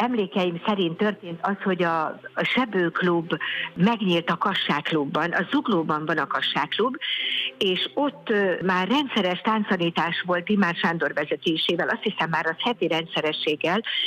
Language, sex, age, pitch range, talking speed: Hungarian, female, 50-69, 160-200 Hz, 130 wpm